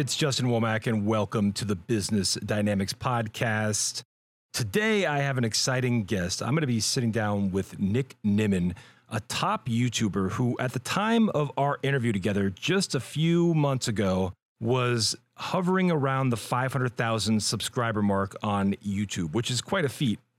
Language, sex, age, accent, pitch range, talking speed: English, male, 40-59, American, 110-140 Hz, 160 wpm